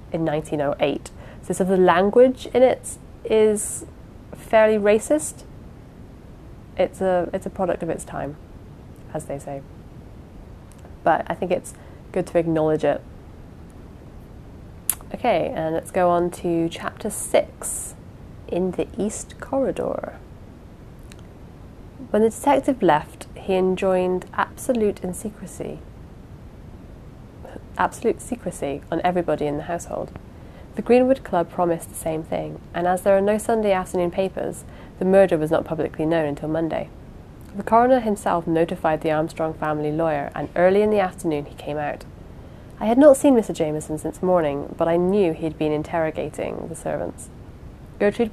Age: 30-49